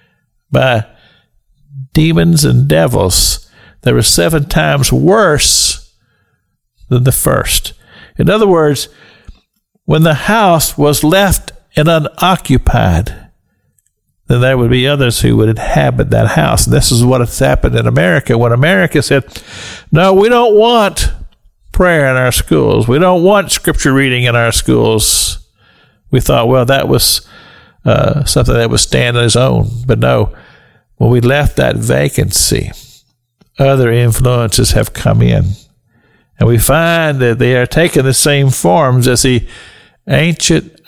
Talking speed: 140 wpm